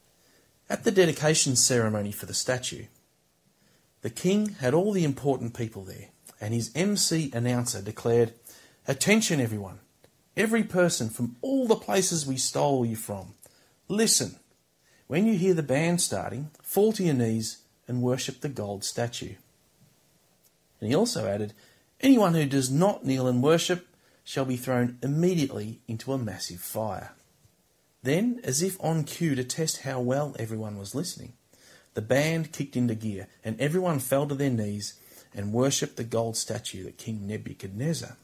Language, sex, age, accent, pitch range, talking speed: English, male, 40-59, Australian, 110-160 Hz, 155 wpm